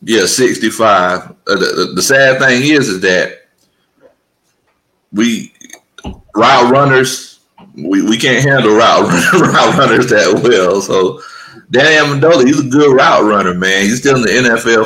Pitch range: 110-150 Hz